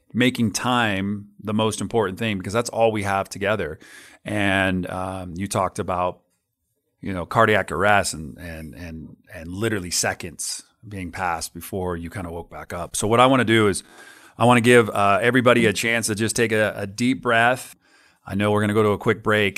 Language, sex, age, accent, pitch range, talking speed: English, male, 40-59, American, 100-115 Hz, 210 wpm